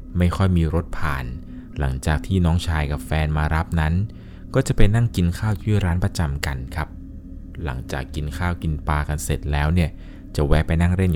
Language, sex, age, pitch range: Thai, male, 20-39, 75-95 Hz